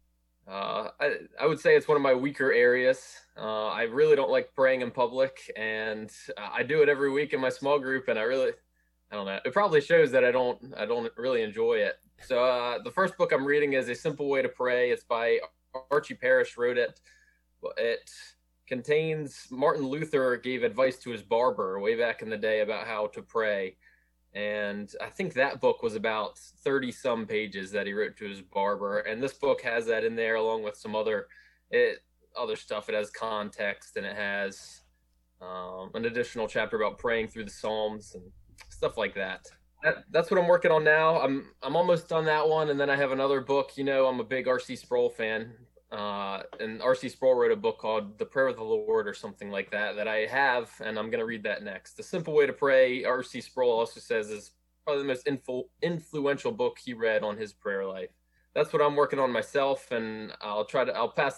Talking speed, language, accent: 215 wpm, English, American